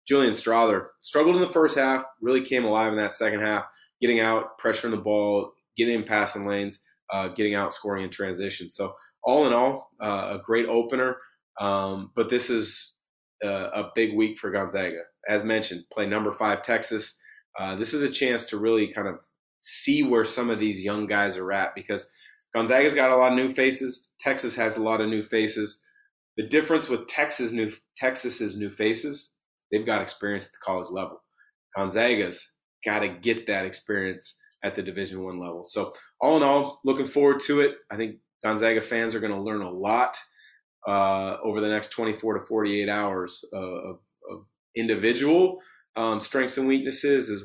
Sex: male